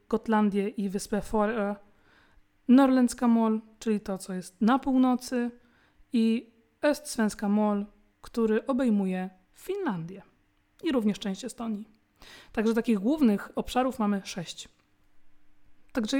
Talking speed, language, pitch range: 105 wpm, Swedish, 200-235 Hz